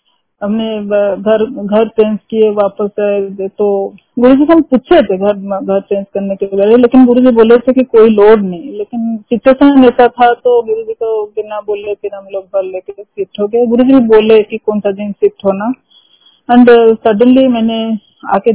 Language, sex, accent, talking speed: Hindi, female, native, 200 wpm